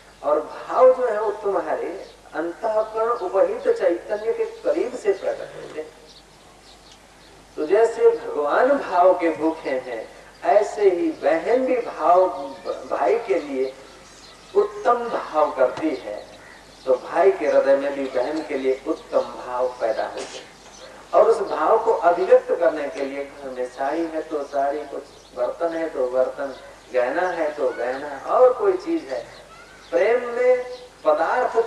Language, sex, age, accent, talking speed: Hindi, male, 50-69, native, 140 wpm